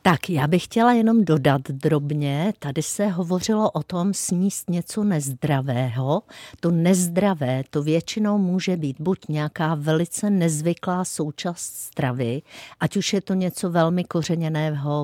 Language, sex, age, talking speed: Czech, female, 50-69, 135 wpm